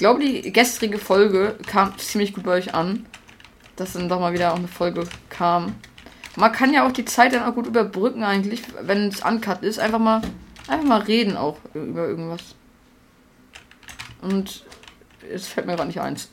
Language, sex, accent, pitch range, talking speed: German, female, German, 170-215 Hz, 185 wpm